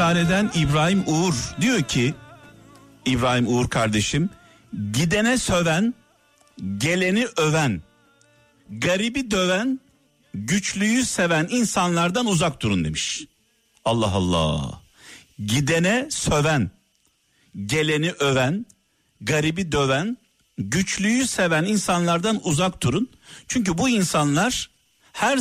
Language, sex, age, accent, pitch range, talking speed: Turkish, male, 60-79, native, 135-200 Hz, 85 wpm